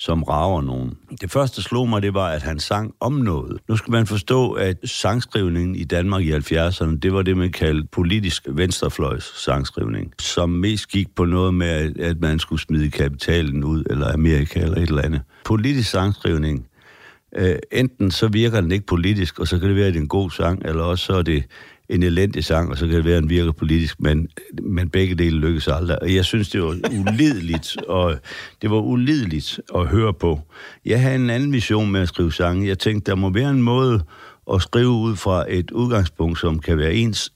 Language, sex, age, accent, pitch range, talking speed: Danish, male, 60-79, native, 80-105 Hz, 210 wpm